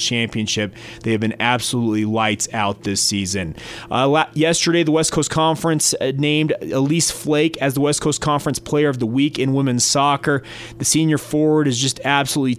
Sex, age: male, 30-49